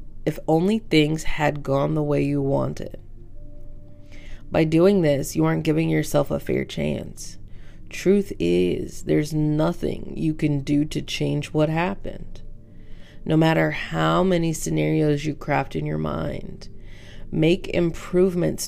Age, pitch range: 30-49, 115-160 Hz